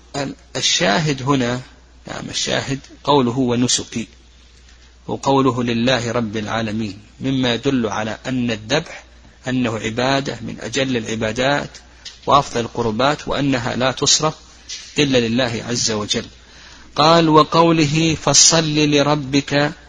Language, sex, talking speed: Arabic, male, 105 wpm